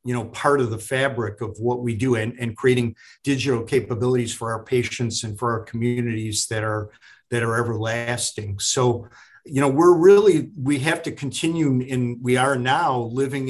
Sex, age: male, 50-69